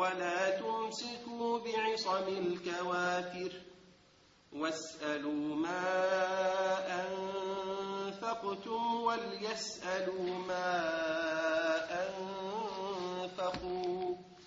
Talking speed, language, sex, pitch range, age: 40 wpm, English, male, 180-230 Hz, 40-59